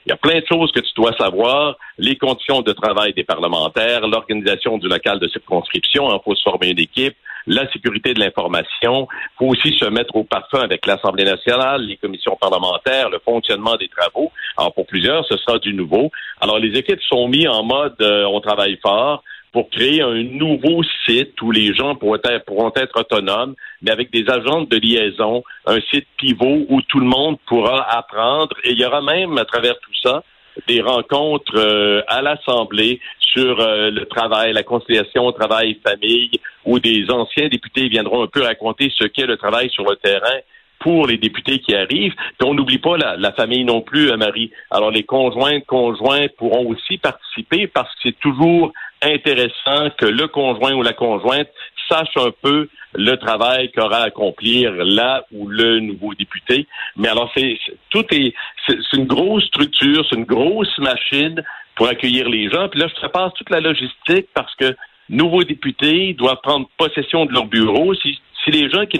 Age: 50-69